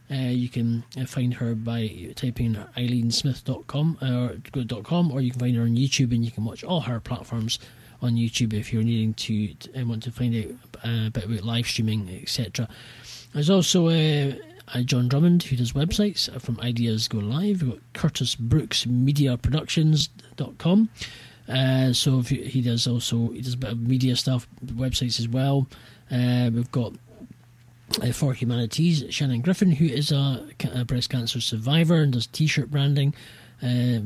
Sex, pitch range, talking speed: male, 120-140 Hz, 185 wpm